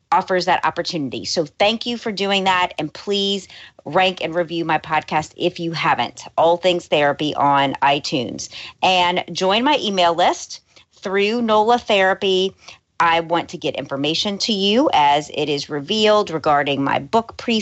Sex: female